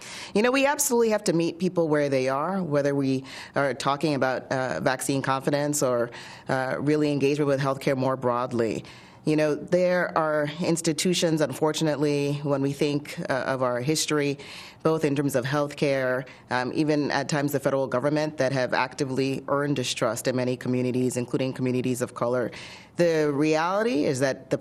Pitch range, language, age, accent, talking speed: 135-160 Hz, English, 30-49, American, 175 wpm